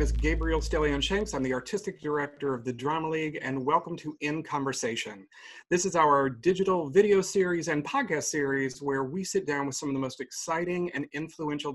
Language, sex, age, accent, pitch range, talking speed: English, male, 40-59, American, 130-175 Hz, 195 wpm